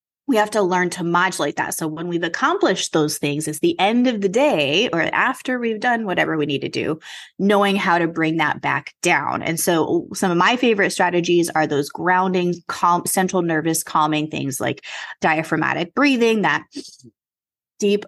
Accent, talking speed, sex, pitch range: American, 185 wpm, female, 155-200 Hz